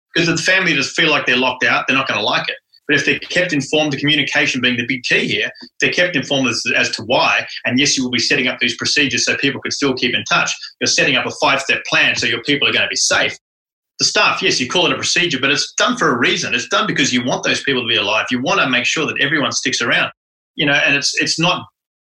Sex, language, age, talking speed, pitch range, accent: male, English, 30-49, 280 wpm, 130-155 Hz, Australian